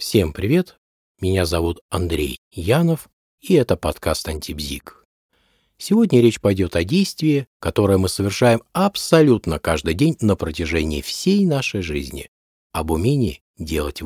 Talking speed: 125 wpm